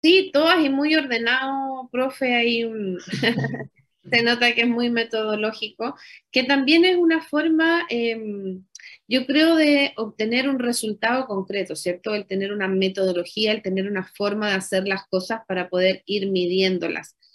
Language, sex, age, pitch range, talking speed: Spanish, female, 30-49, 200-265 Hz, 150 wpm